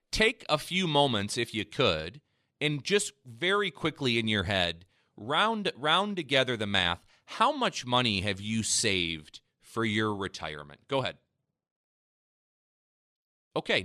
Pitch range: 100-145 Hz